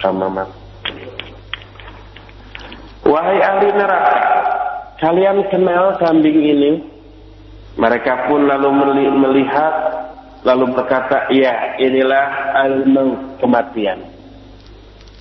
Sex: male